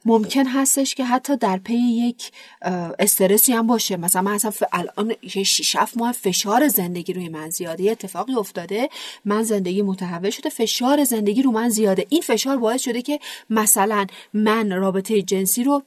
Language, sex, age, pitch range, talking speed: Persian, female, 30-49, 180-230 Hz, 160 wpm